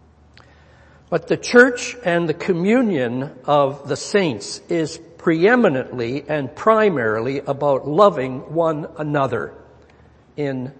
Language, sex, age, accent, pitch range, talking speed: English, male, 60-79, American, 140-180 Hz, 100 wpm